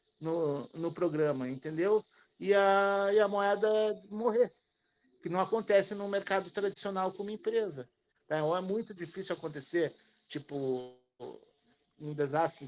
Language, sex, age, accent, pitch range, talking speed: Portuguese, male, 50-69, Brazilian, 150-200 Hz, 130 wpm